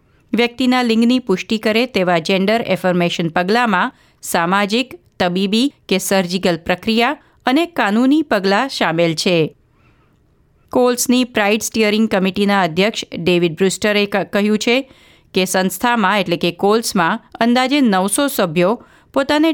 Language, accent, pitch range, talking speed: Gujarati, native, 185-240 Hz, 105 wpm